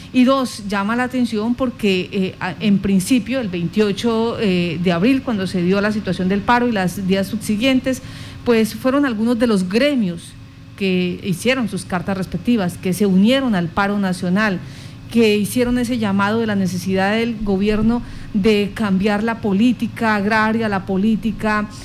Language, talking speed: Spanish, 160 wpm